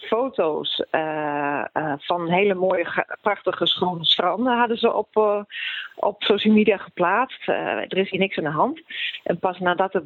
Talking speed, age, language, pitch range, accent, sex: 175 wpm, 40-59, Dutch, 165-205 Hz, Dutch, female